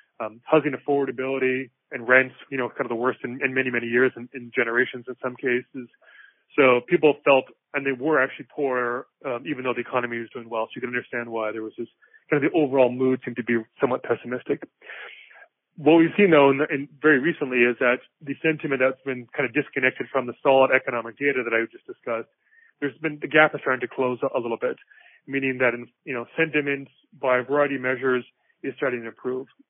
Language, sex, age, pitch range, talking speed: English, male, 30-49, 125-145 Hz, 225 wpm